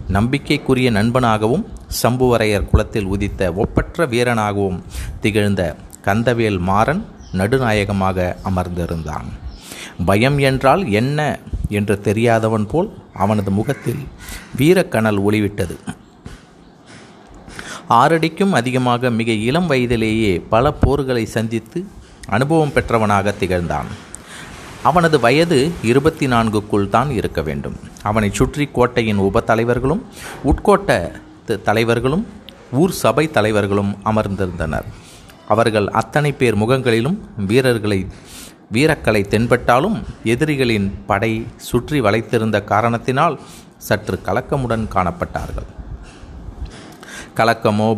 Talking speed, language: 85 wpm, Tamil